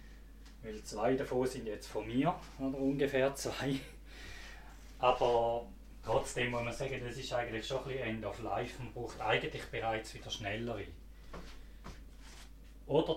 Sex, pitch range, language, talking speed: male, 105-130 Hz, German, 140 wpm